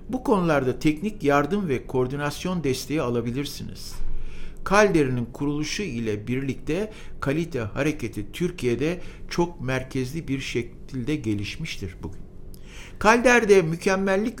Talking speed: 95 wpm